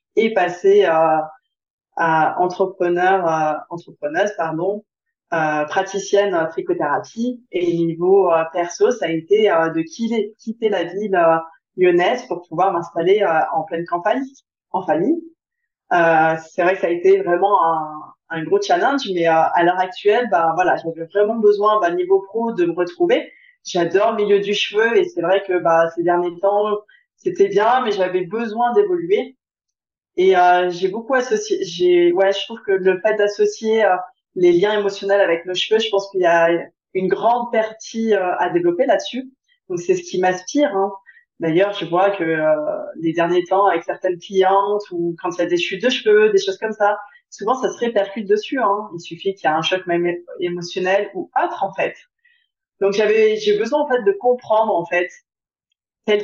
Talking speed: 185 wpm